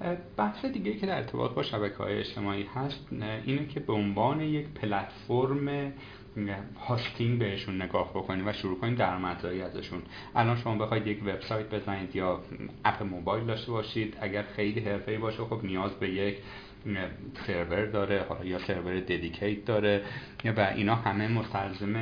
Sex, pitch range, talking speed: male, 100-130 Hz, 145 wpm